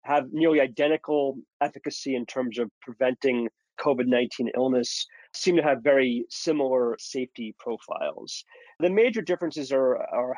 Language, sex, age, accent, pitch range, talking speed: English, male, 30-49, American, 120-145 Hz, 125 wpm